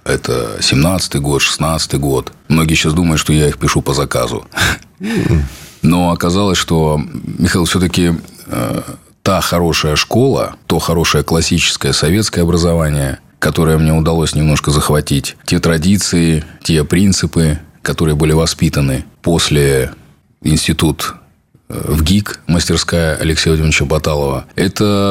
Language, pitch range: Russian, 75-90 Hz